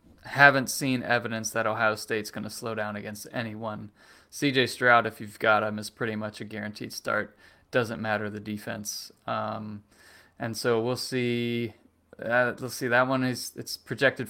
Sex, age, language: male, 20-39, English